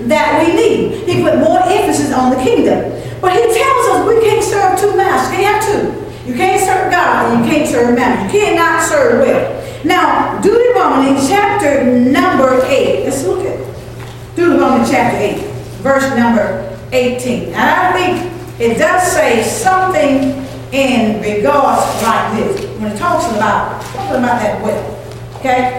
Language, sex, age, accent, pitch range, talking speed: English, female, 40-59, American, 245-350 Hz, 160 wpm